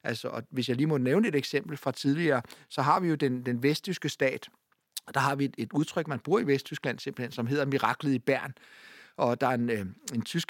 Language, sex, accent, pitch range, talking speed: Danish, male, native, 130-155 Hz, 240 wpm